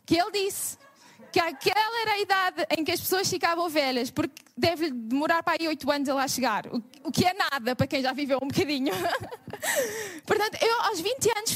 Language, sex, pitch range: Portuguese, female, 280-385 Hz